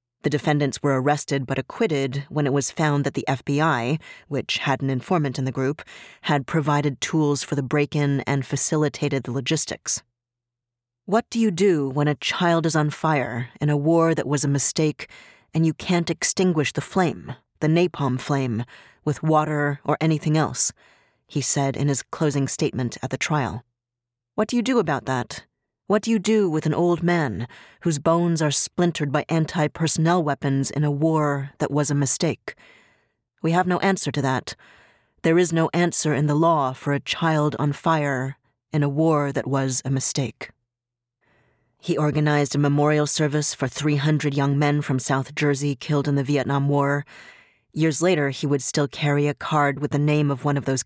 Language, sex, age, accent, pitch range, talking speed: English, female, 30-49, American, 135-155 Hz, 185 wpm